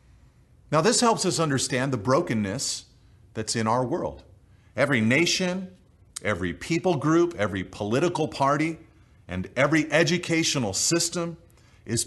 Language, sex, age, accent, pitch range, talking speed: English, male, 40-59, American, 105-150 Hz, 120 wpm